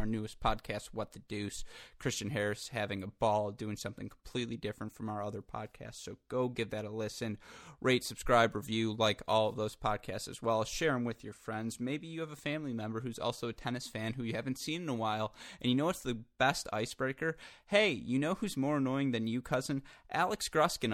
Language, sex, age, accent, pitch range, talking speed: English, male, 20-39, American, 110-130 Hz, 220 wpm